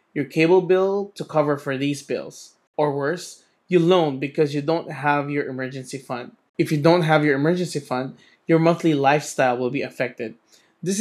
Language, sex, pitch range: English, male, 135-160 Hz